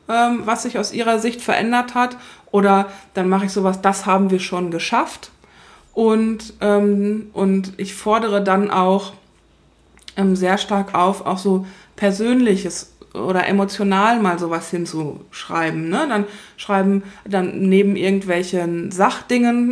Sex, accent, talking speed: female, German, 130 wpm